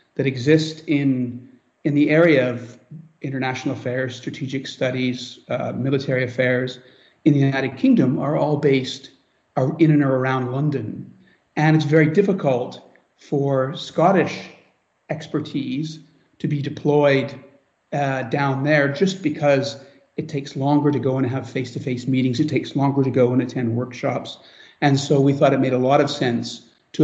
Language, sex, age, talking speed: English, male, 40-59, 150 wpm